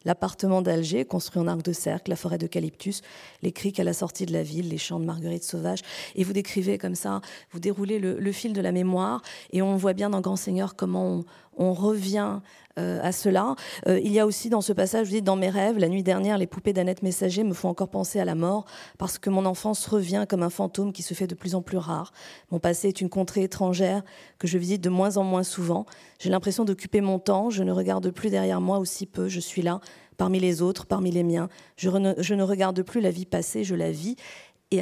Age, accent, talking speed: 40-59, French, 245 wpm